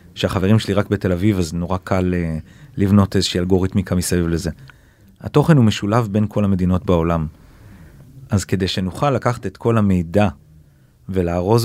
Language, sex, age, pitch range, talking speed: Hebrew, male, 30-49, 90-120 Hz, 145 wpm